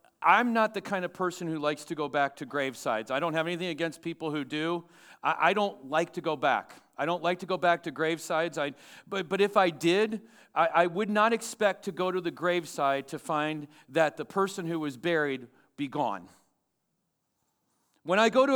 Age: 40-59